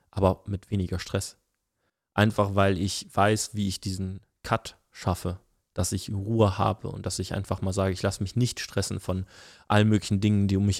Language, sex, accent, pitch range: German, male, German, 95-105 Hz